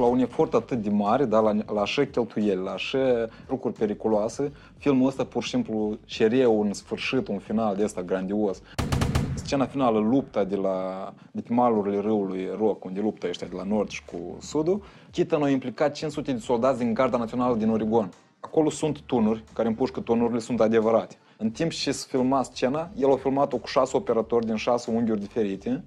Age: 20-39